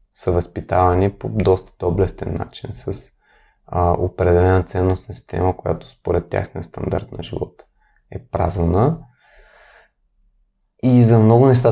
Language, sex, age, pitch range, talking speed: Bulgarian, male, 20-39, 90-105 Hz, 120 wpm